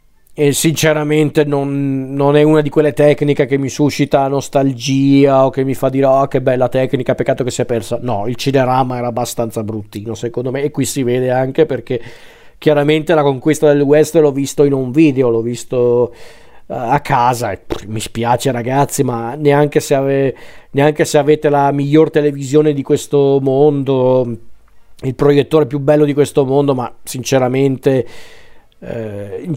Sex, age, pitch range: male, 40-59, 125-145 Hz